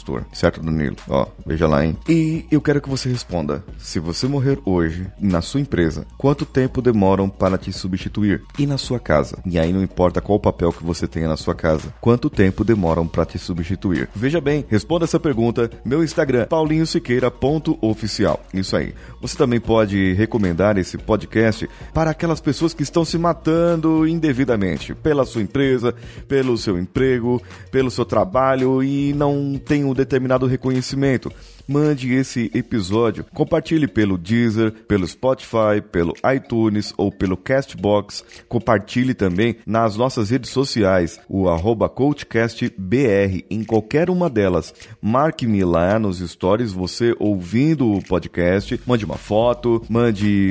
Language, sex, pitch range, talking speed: Portuguese, male, 95-130 Hz, 145 wpm